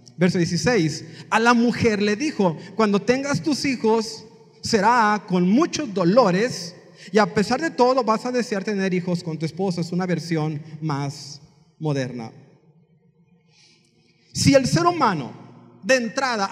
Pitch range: 155-245 Hz